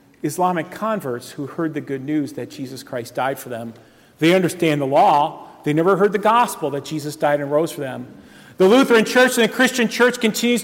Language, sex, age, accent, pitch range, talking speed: English, male, 40-59, American, 150-210 Hz, 210 wpm